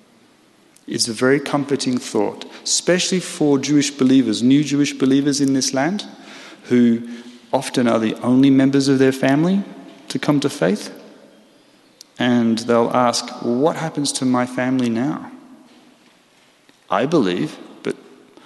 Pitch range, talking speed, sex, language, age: 105-140 Hz, 130 wpm, male, English, 30-49